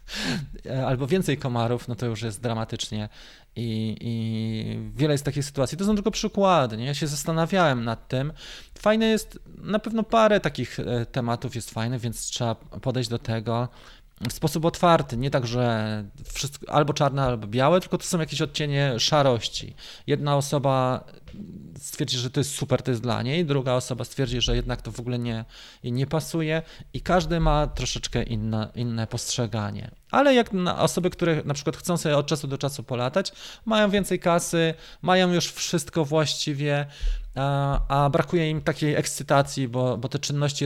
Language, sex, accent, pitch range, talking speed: Polish, male, native, 120-160 Hz, 170 wpm